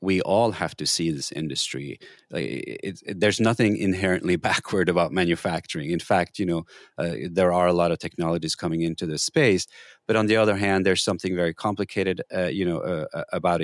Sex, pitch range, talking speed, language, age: male, 90-110 Hz, 190 wpm, English, 30-49